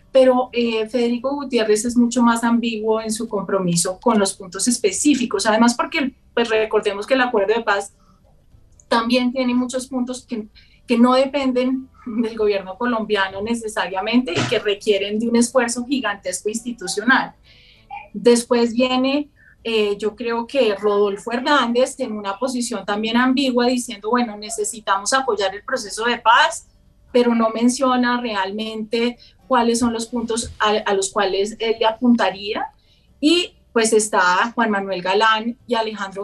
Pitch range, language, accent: 210-250 Hz, Spanish, Colombian